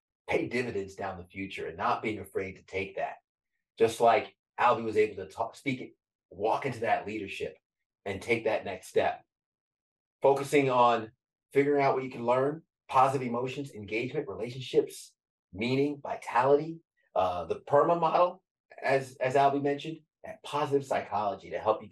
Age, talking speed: 30-49, 155 wpm